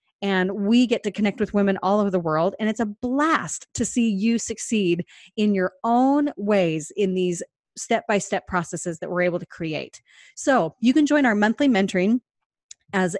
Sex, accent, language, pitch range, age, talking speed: female, American, English, 190-245 Hz, 30-49, 180 wpm